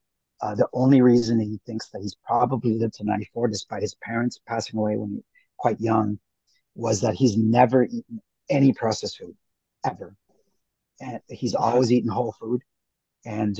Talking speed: 170 wpm